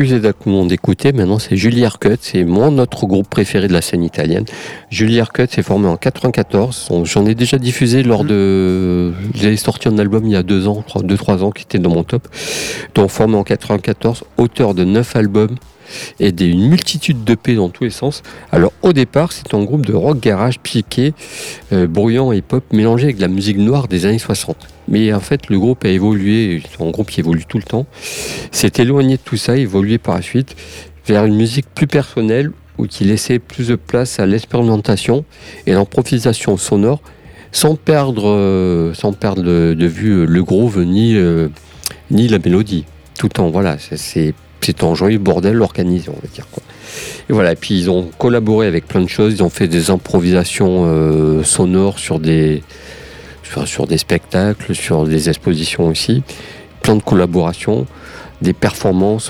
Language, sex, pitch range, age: French, male, 90-120 Hz, 50-69